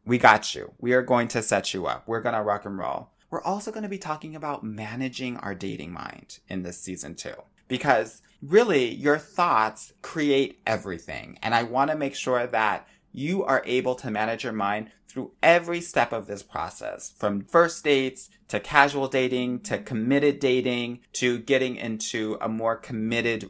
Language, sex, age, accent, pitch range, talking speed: English, male, 30-49, American, 105-145 Hz, 185 wpm